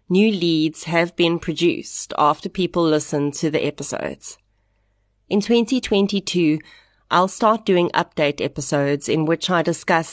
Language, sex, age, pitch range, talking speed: English, female, 30-49, 145-185 Hz, 130 wpm